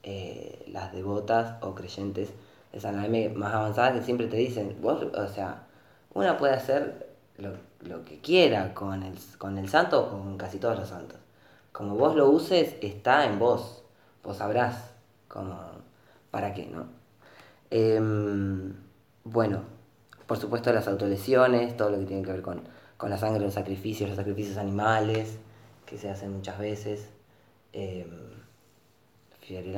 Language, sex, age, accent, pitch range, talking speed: Spanish, female, 20-39, Argentinian, 100-115 Hz, 150 wpm